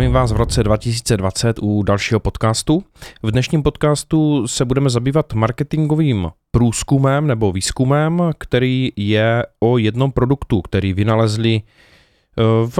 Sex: male